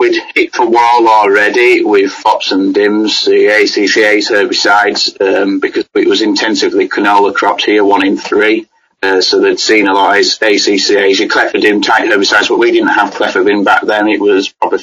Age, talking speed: 30-49, 180 wpm